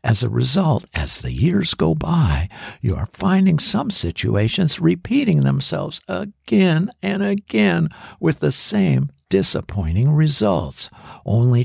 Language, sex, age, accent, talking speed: English, male, 60-79, American, 125 wpm